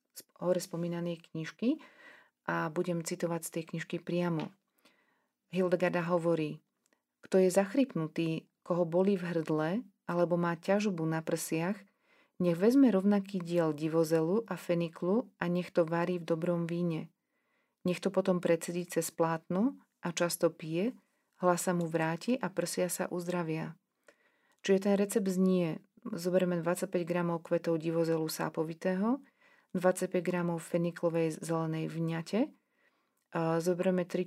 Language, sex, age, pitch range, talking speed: Slovak, female, 40-59, 165-195 Hz, 130 wpm